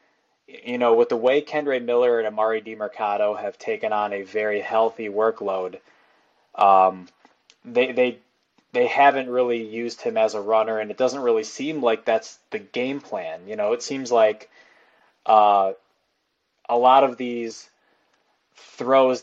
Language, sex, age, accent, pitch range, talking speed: English, male, 20-39, American, 110-150 Hz, 155 wpm